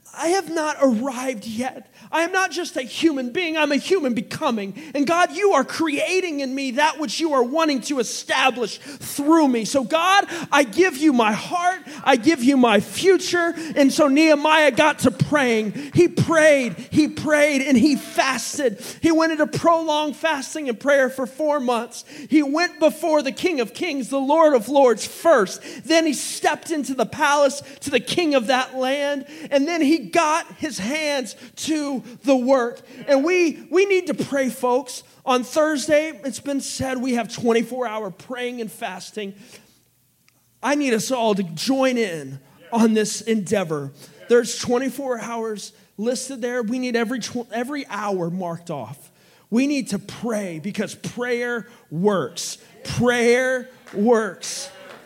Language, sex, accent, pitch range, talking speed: English, male, American, 225-295 Hz, 165 wpm